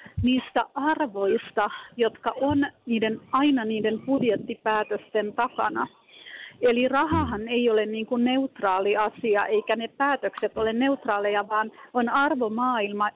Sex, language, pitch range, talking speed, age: female, Finnish, 215-260 Hz, 115 wpm, 40-59